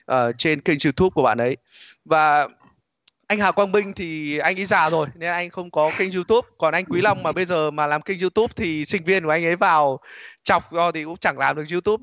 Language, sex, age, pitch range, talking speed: Vietnamese, male, 20-39, 155-200 Hz, 250 wpm